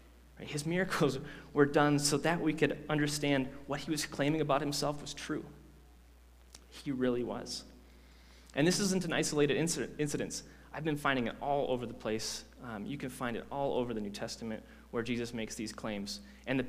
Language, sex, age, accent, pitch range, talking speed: English, male, 30-49, American, 85-140 Hz, 185 wpm